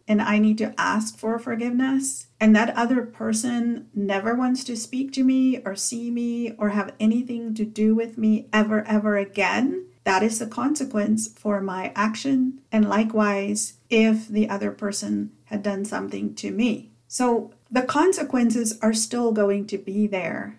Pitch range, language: 200-235 Hz, English